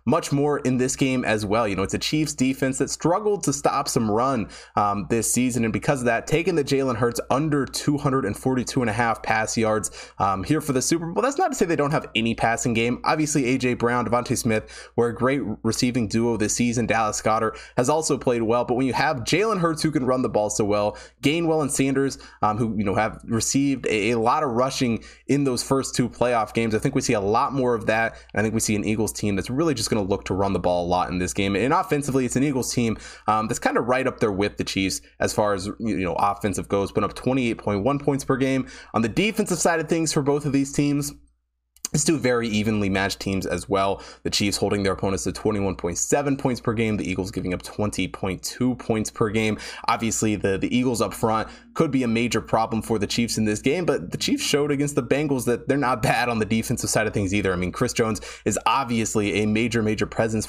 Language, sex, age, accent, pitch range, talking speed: English, male, 20-39, American, 105-140 Hz, 245 wpm